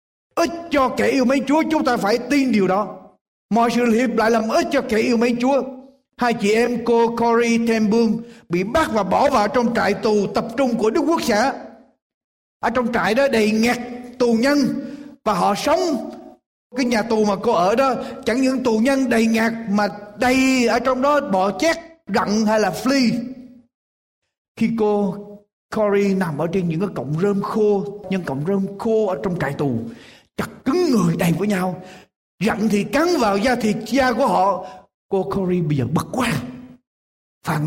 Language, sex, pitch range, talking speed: Vietnamese, male, 195-255 Hz, 190 wpm